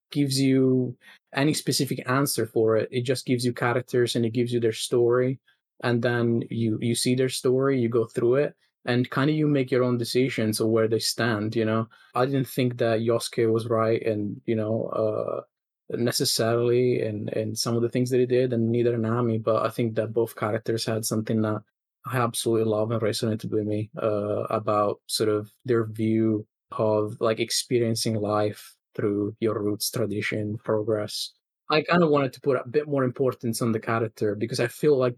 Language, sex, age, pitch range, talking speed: English, male, 20-39, 110-125 Hz, 200 wpm